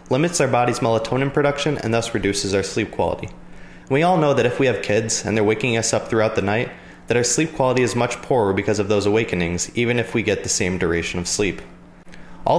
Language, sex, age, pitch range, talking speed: English, male, 20-39, 100-135 Hz, 230 wpm